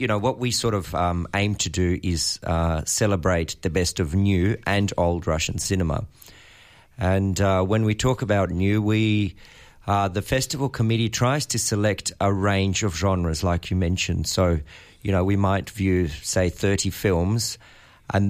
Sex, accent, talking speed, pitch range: male, Australian, 175 wpm, 90-105 Hz